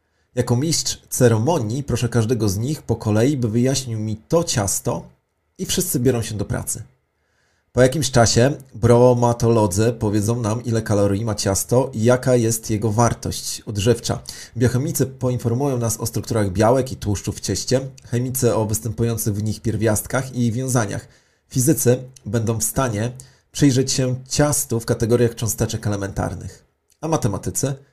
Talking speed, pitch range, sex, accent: 145 wpm, 110-130 Hz, male, native